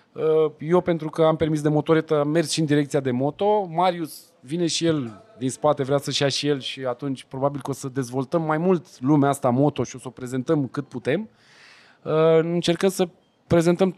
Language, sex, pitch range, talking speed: Romanian, male, 125-170 Hz, 200 wpm